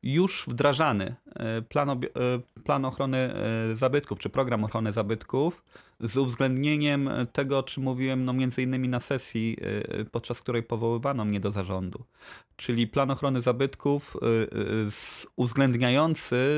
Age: 30-49